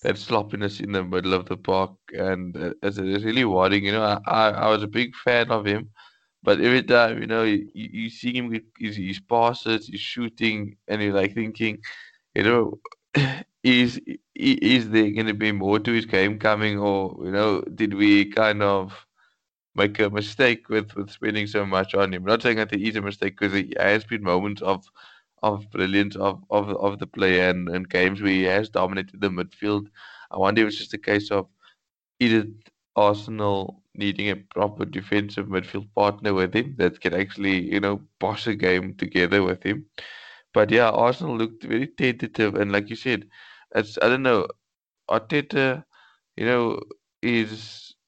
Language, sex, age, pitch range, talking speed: English, male, 20-39, 100-115 Hz, 180 wpm